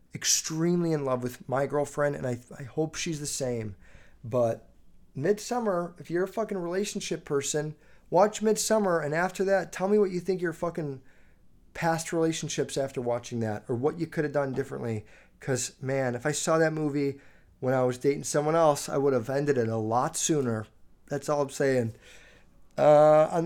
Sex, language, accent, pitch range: male, English, American, 120-170 Hz